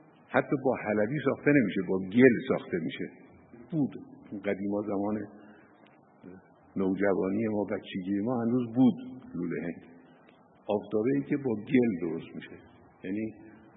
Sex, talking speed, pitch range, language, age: male, 120 wpm, 105-140 Hz, Persian, 60-79